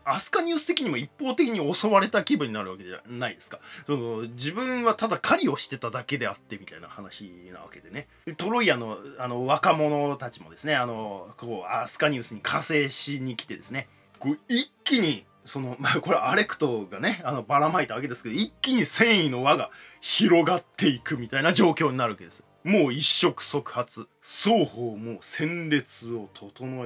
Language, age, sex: Japanese, 20-39, male